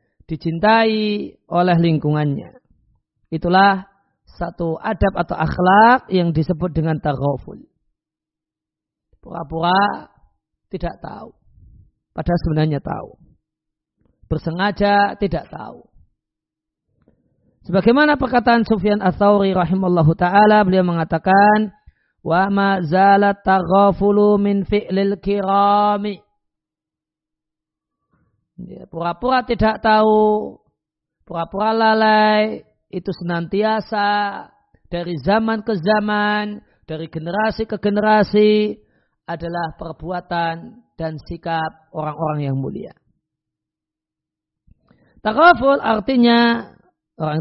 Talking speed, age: 80 wpm, 40-59